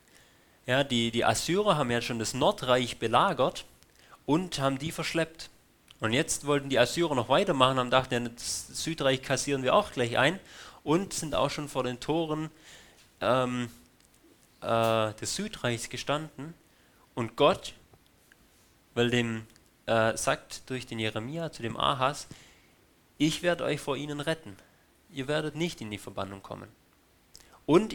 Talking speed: 150 wpm